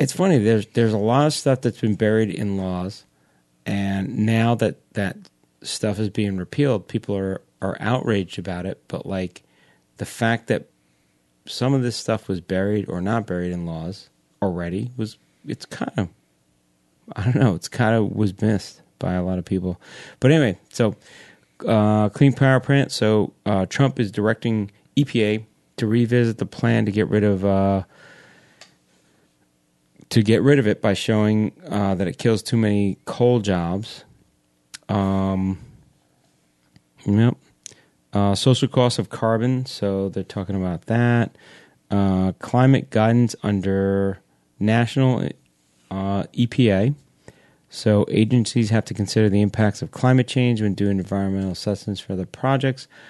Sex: male